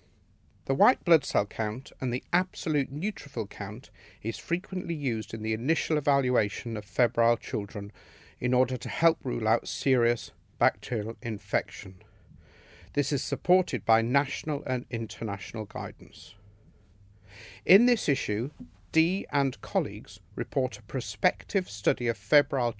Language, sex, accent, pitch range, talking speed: English, male, British, 105-140 Hz, 130 wpm